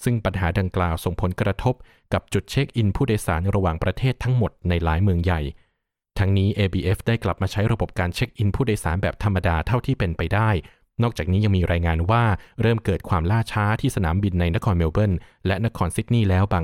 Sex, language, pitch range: male, Thai, 90-110 Hz